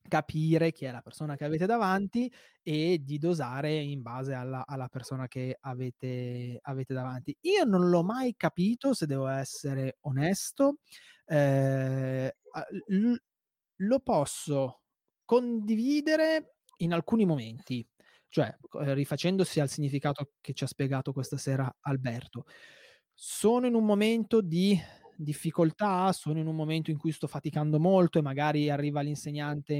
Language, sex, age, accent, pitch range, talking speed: Italian, male, 20-39, native, 145-185 Hz, 135 wpm